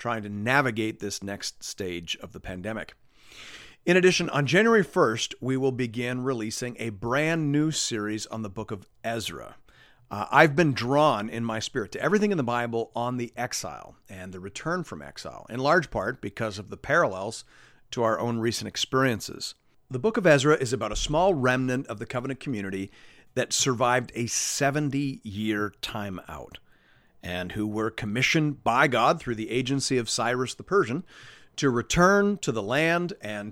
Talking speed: 175 wpm